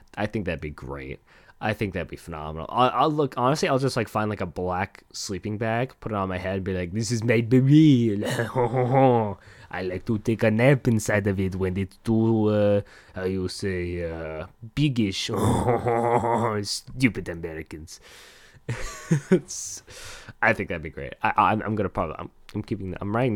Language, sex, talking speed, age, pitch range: English, male, 180 wpm, 20-39, 90-115 Hz